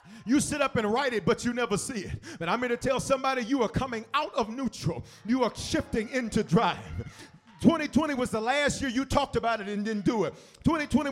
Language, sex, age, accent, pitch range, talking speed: English, male, 40-59, American, 155-255 Hz, 225 wpm